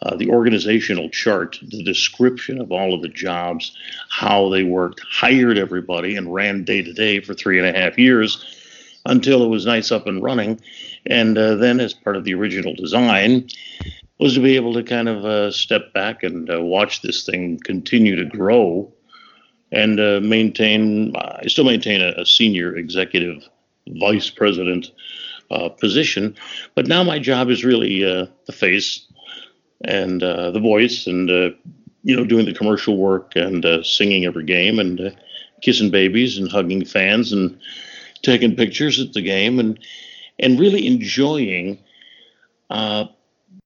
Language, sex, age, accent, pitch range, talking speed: English, male, 60-79, American, 95-120 Hz, 165 wpm